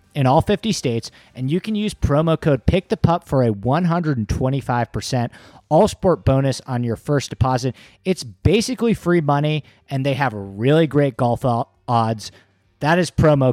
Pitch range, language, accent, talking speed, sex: 125-170 Hz, English, American, 170 wpm, male